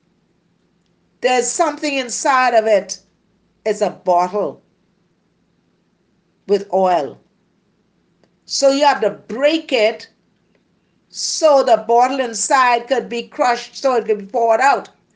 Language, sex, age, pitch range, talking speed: English, female, 50-69, 190-270 Hz, 115 wpm